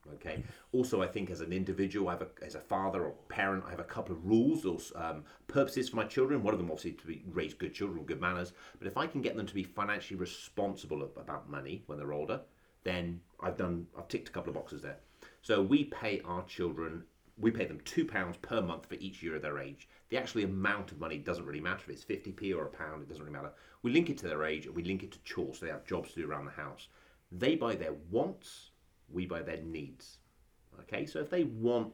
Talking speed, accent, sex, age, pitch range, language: 250 wpm, British, male, 30-49, 90-110 Hz, English